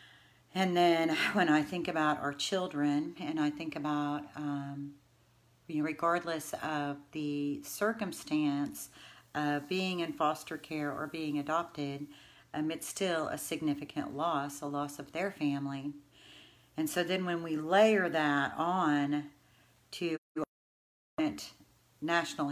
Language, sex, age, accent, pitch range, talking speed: English, female, 40-59, American, 140-155 Hz, 130 wpm